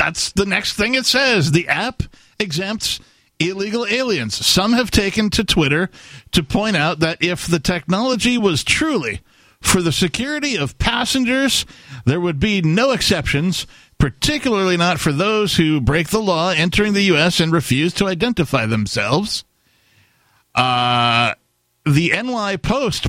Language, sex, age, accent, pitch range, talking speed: English, male, 50-69, American, 130-195 Hz, 145 wpm